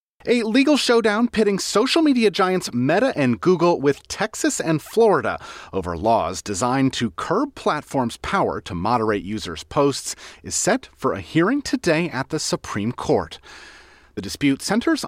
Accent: American